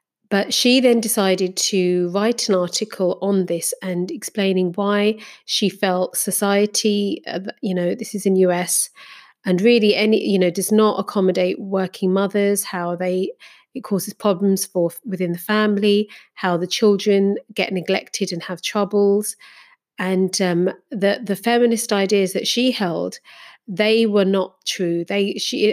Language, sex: English, female